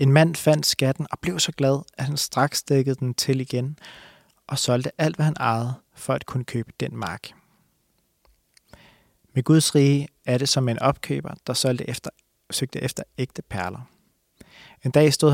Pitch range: 125-150 Hz